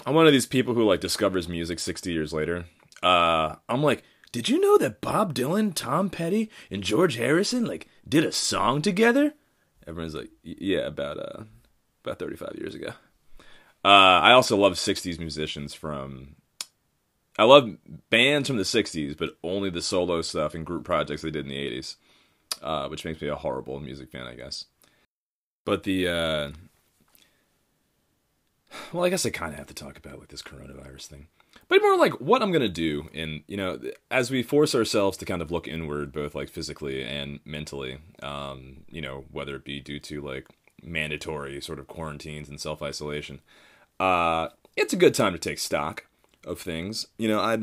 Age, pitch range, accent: 30-49, 75-115 Hz, American